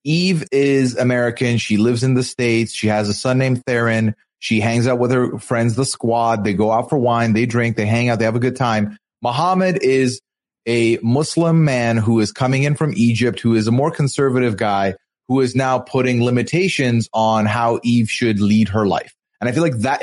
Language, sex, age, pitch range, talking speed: English, male, 30-49, 115-150 Hz, 215 wpm